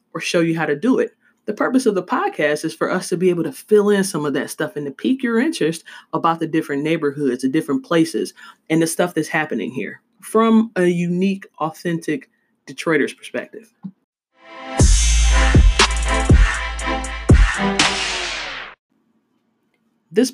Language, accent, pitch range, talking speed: English, American, 155-215 Hz, 150 wpm